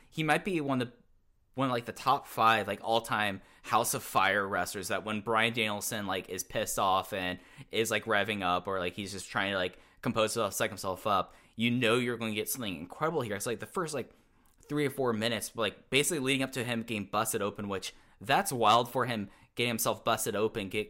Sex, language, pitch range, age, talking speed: male, English, 95-120 Hz, 10-29, 235 wpm